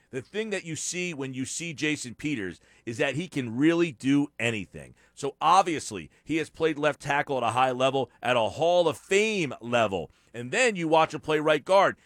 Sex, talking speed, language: male, 210 wpm, English